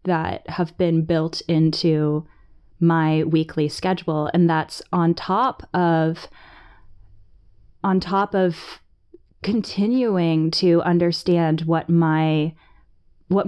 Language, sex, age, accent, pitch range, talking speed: English, female, 20-39, American, 155-180 Hz, 85 wpm